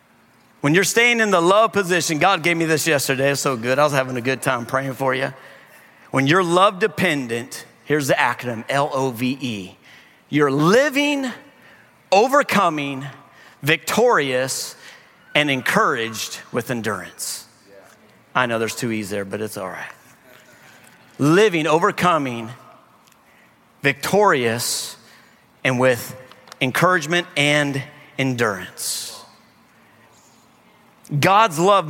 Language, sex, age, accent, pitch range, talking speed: English, male, 40-59, American, 135-215 Hz, 115 wpm